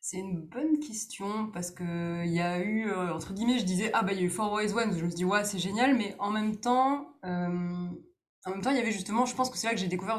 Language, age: French, 20-39